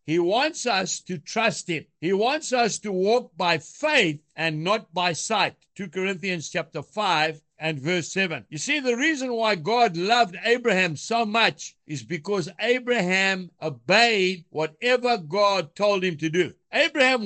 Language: English